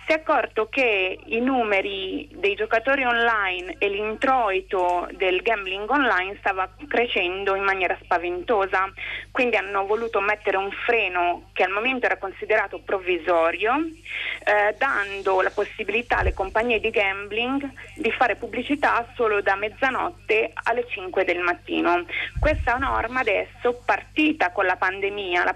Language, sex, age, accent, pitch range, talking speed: Italian, female, 30-49, native, 190-235 Hz, 135 wpm